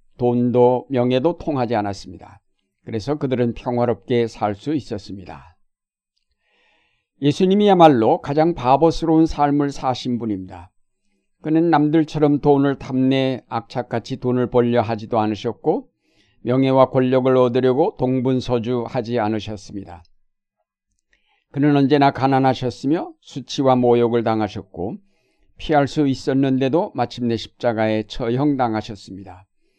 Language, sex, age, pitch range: Korean, male, 50-69, 115-140 Hz